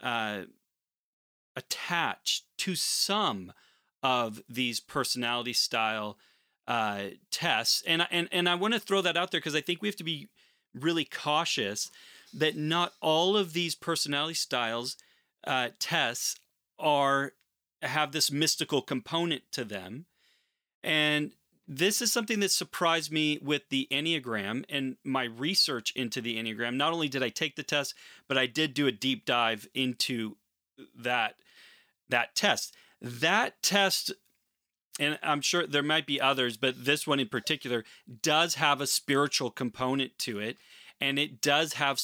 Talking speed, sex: 150 wpm, male